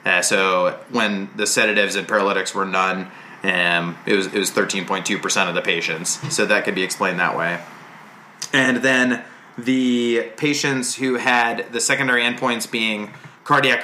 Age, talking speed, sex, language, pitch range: 30-49, 155 wpm, male, English, 100-125 Hz